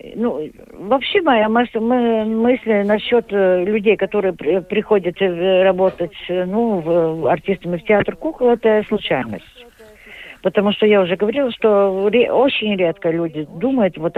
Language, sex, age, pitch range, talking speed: Russian, female, 50-69, 170-230 Hz, 130 wpm